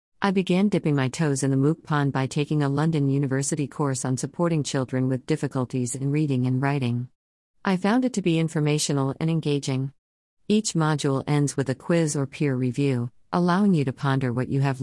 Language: English